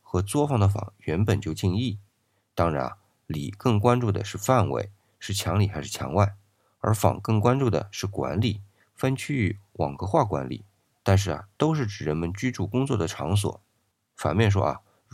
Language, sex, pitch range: Chinese, male, 95-115 Hz